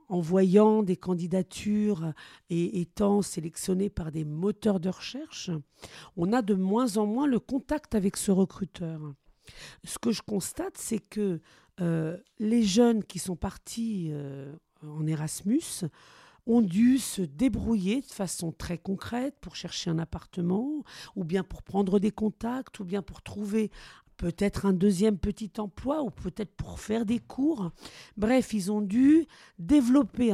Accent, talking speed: French, 150 wpm